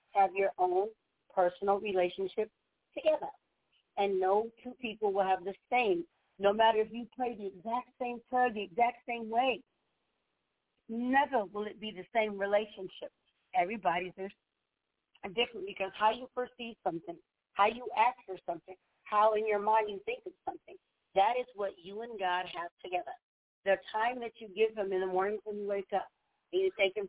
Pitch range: 195-235 Hz